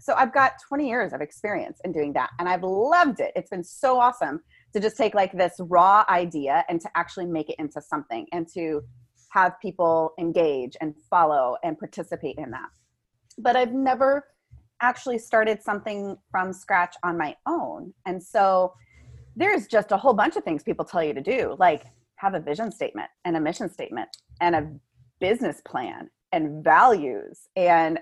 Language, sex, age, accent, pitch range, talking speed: English, female, 30-49, American, 160-215 Hz, 180 wpm